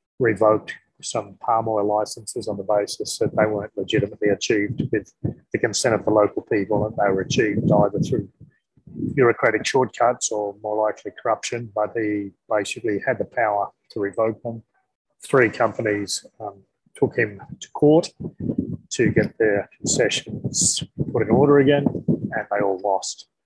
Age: 30-49